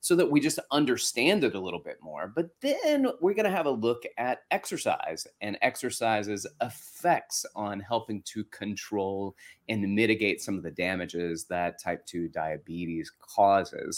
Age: 30-49